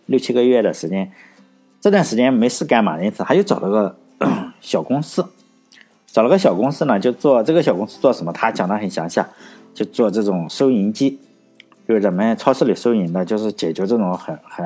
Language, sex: Chinese, male